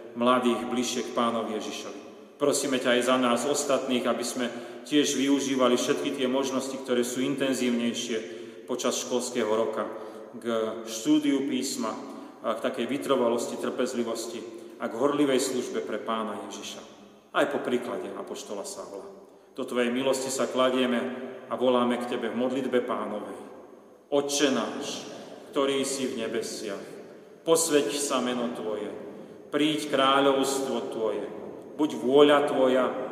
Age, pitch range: 40-59, 115-135 Hz